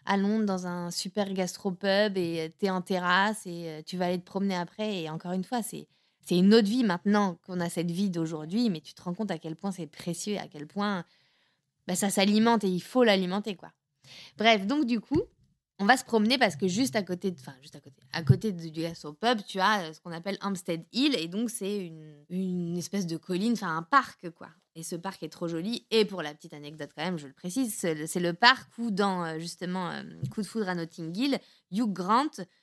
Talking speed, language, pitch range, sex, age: 235 wpm, French, 175-215 Hz, female, 20-39